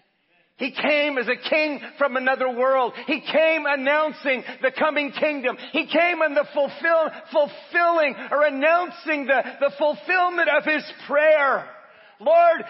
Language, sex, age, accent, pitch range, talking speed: English, male, 50-69, American, 215-295 Hz, 135 wpm